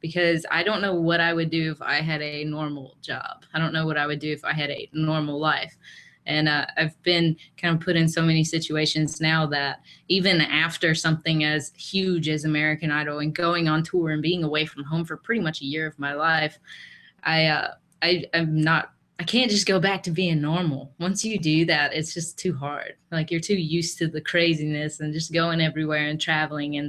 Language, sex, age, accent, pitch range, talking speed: English, female, 20-39, American, 150-170 Hz, 220 wpm